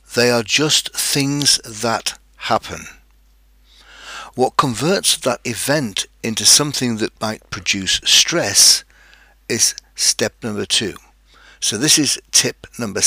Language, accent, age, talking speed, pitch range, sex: English, British, 60-79, 115 wpm, 100-130 Hz, male